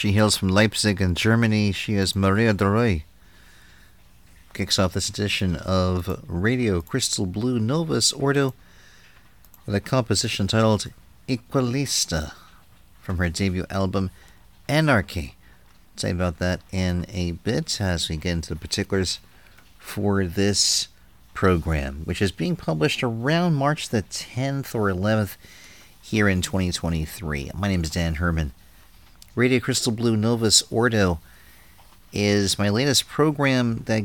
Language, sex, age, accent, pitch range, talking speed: English, male, 50-69, American, 90-115 Hz, 130 wpm